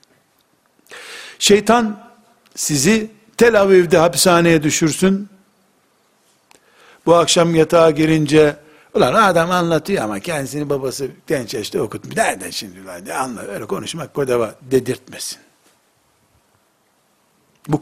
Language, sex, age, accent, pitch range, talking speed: Turkish, male, 60-79, native, 130-175 Hz, 90 wpm